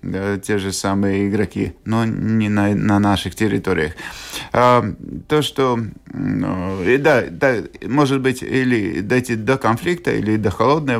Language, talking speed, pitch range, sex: Russian, 140 wpm, 100-125 Hz, male